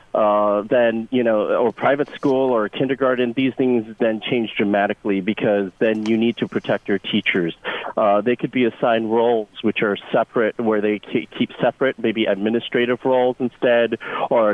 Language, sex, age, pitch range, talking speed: English, male, 30-49, 110-125 Hz, 165 wpm